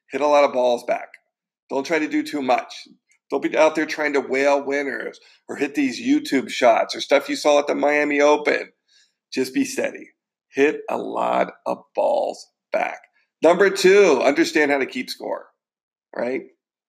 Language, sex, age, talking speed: English, male, 40-59, 180 wpm